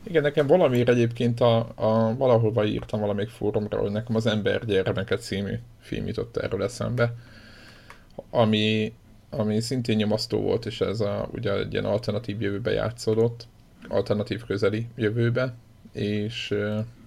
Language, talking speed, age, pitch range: Hungarian, 135 wpm, 20-39, 105-115 Hz